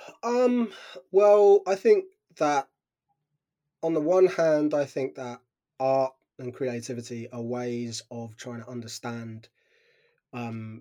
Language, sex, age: English, male, 20-39